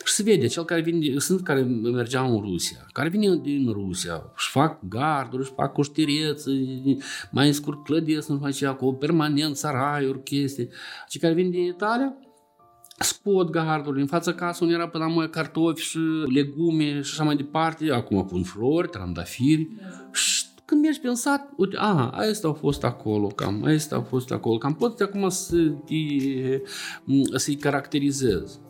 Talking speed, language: 160 wpm, Romanian